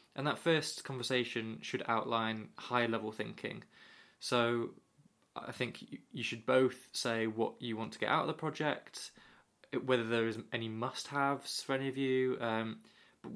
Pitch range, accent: 115-135 Hz, British